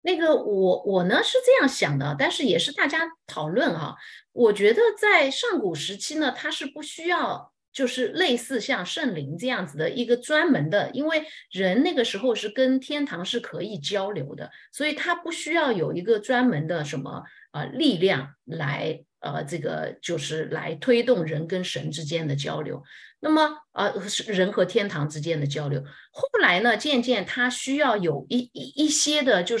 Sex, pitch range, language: female, 185-300 Hz, Chinese